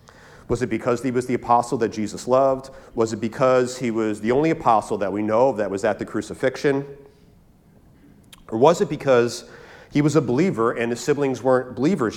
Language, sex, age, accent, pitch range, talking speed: English, male, 40-59, American, 105-135 Hz, 195 wpm